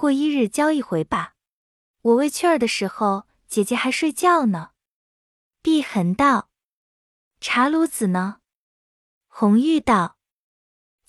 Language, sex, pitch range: Chinese, female, 210-330 Hz